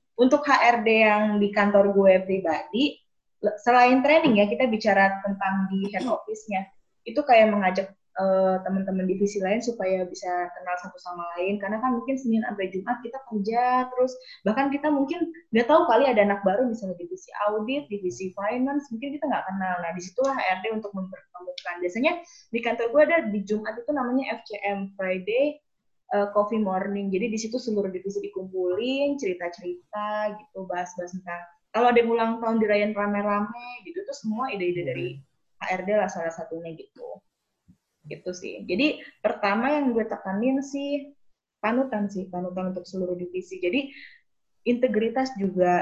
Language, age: Indonesian, 20-39